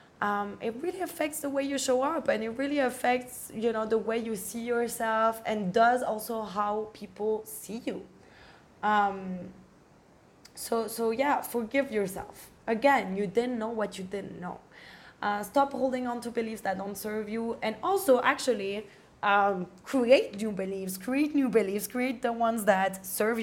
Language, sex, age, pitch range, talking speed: English, female, 20-39, 190-230 Hz, 170 wpm